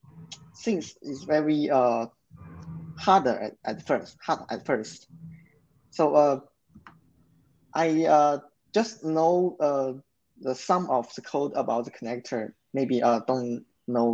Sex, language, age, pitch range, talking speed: male, English, 20-39, 120-140 Hz, 130 wpm